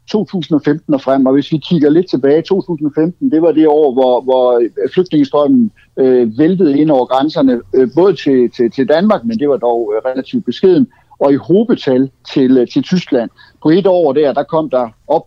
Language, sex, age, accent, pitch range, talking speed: Danish, male, 60-79, native, 130-185 Hz, 195 wpm